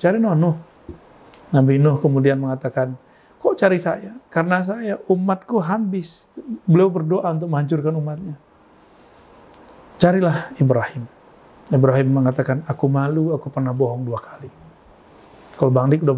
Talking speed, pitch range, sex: 120 wpm, 130-165 Hz, male